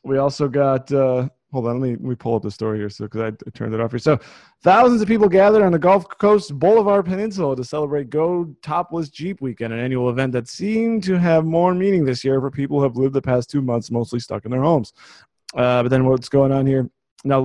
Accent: American